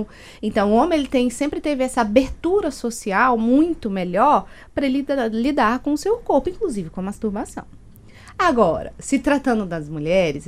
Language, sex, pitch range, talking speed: Portuguese, female, 205-270 Hz, 160 wpm